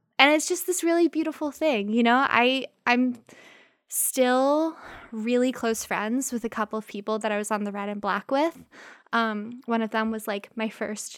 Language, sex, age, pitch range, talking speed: English, female, 20-39, 210-245 Hz, 200 wpm